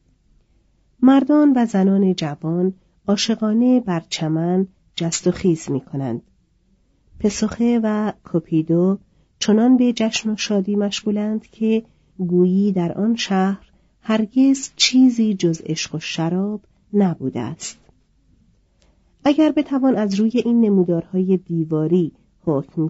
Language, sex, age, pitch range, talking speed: Persian, female, 40-59, 165-220 Hz, 110 wpm